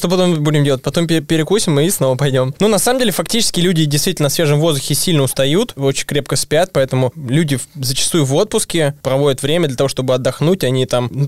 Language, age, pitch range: Russian, 20-39, 130-155 Hz